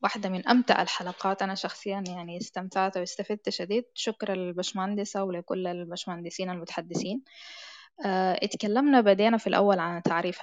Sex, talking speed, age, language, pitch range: female, 120 wpm, 10-29, Arabic, 180-215 Hz